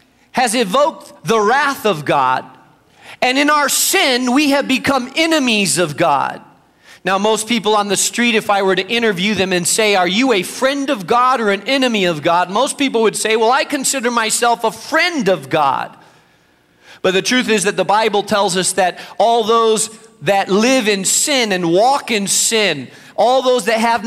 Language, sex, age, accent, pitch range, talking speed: English, male, 40-59, American, 195-260 Hz, 190 wpm